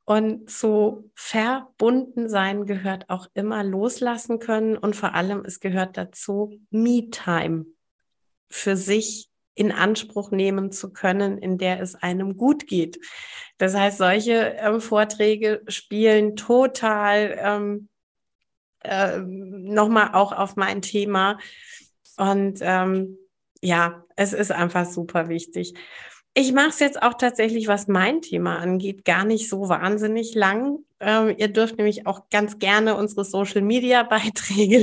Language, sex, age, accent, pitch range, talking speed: German, female, 30-49, German, 190-230 Hz, 130 wpm